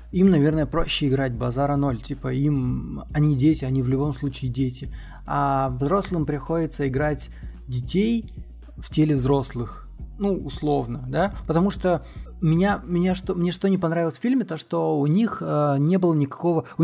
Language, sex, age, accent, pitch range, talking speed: Russian, male, 20-39, native, 130-165 Hz, 155 wpm